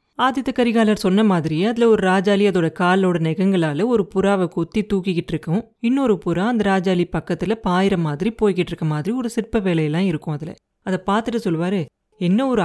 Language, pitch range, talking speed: Tamil, 170-235 Hz, 155 wpm